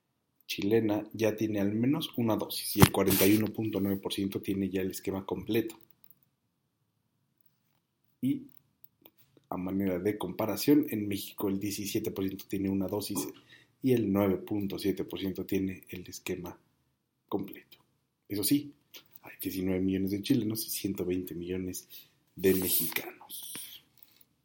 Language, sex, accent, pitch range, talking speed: Spanish, male, Mexican, 95-110 Hz, 115 wpm